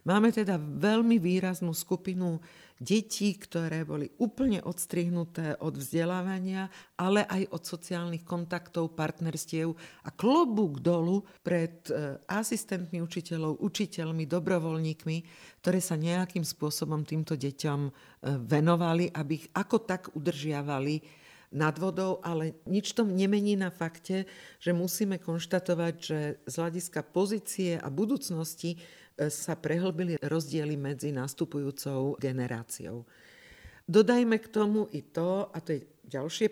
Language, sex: Slovak, female